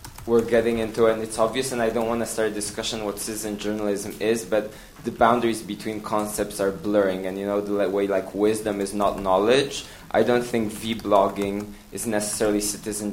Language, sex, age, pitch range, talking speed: English, male, 20-39, 100-115 Hz, 195 wpm